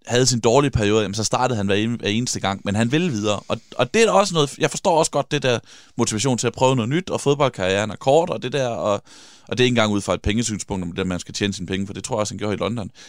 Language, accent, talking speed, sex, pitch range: Danish, native, 305 wpm, male, 95-125 Hz